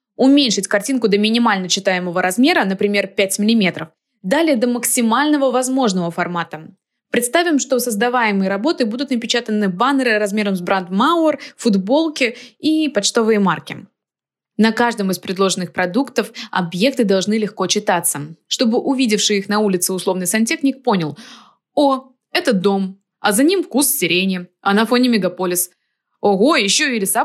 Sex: female